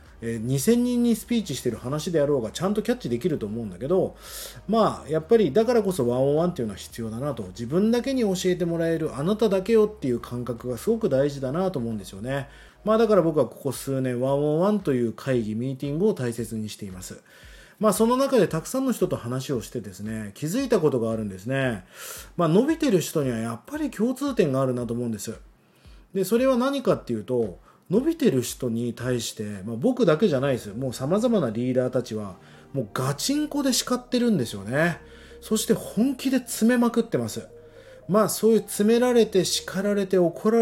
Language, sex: Japanese, male